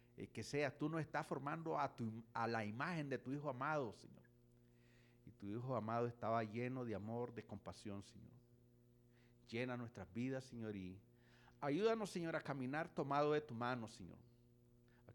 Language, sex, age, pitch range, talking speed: English, male, 50-69, 110-120 Hz, 160 wpm